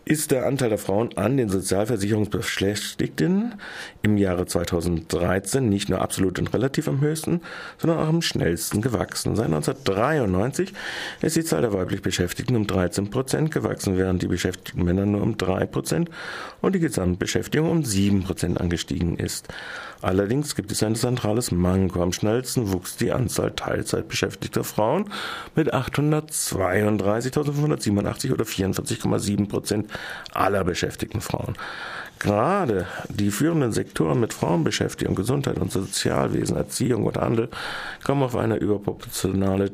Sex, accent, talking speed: male, German, 135 wpm